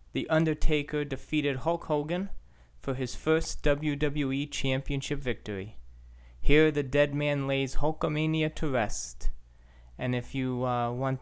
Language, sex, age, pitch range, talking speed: English, male, 30-49, 115-145 Hz, 130 wpm